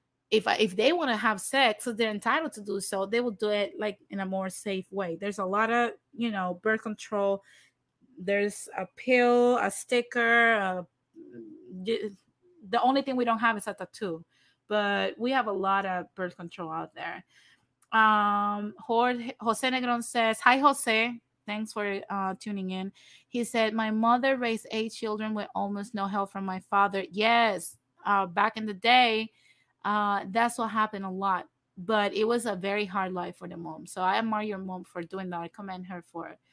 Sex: female